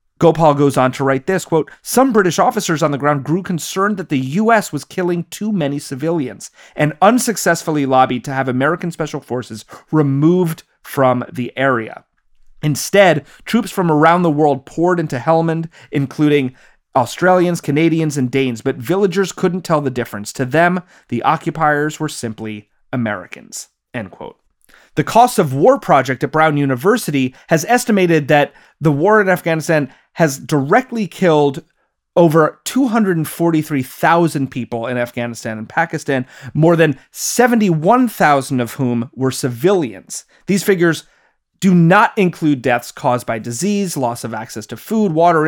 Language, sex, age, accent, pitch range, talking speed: English, male, 30-49, American, 135-180 Hz, 145 wpm